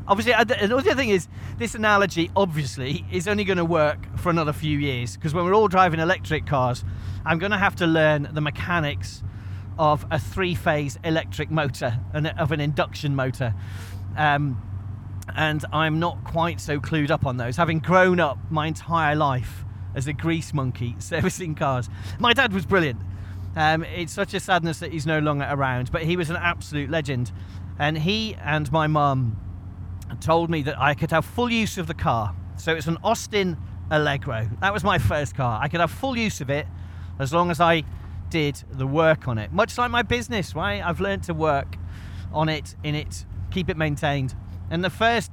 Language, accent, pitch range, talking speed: English, British, 105-165 Hz, 190 wpm